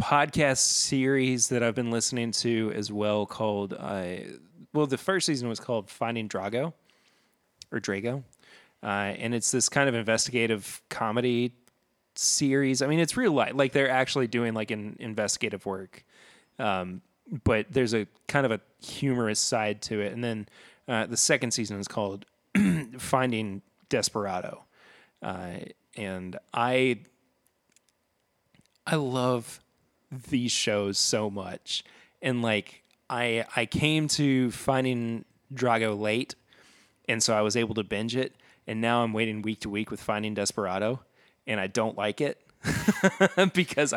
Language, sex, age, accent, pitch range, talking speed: English, male, 30-49, American, 105-130 Hz, 145 wpm